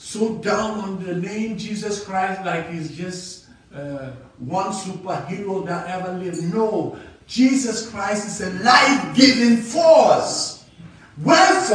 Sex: male